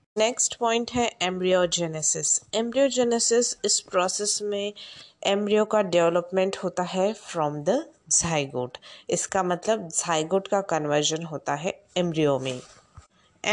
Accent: native